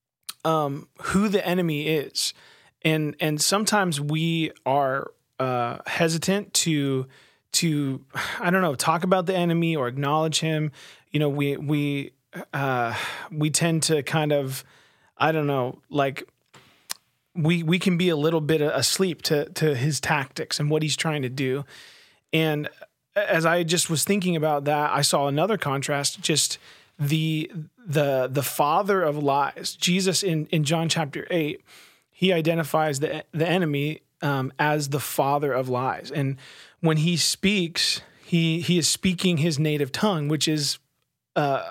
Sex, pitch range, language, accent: male, 145-170 Hz, English, American